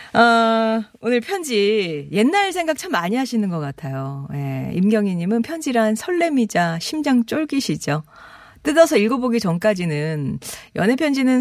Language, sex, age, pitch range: Korean, female, 40-59, 160-245 Hz